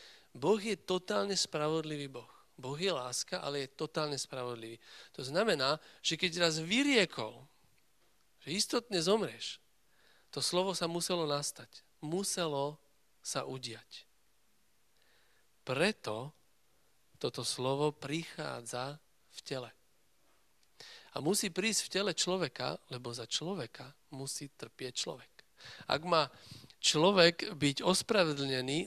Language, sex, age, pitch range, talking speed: Slovak, male, 40-59, 135-175 Hz, 110 wpm